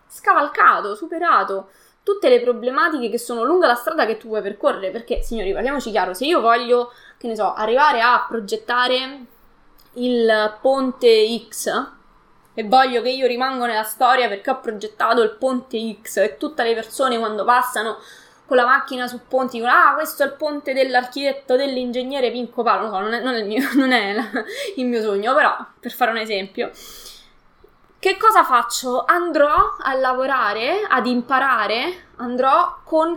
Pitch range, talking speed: 220-285 Hz, 165 wpm